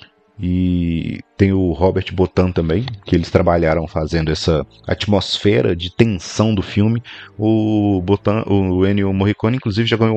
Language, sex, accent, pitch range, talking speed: Portuguese, male, Brazilian, 90-105 Hz, 135 wpm